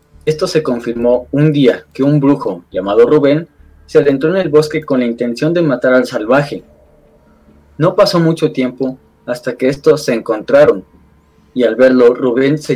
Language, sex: Spanish, male